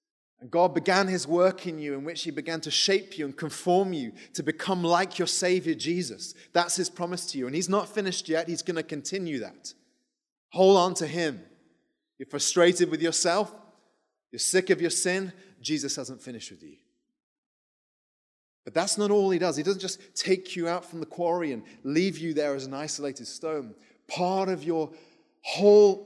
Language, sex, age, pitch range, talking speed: English, male, 30-49, 140-185 Hz, 190 wpm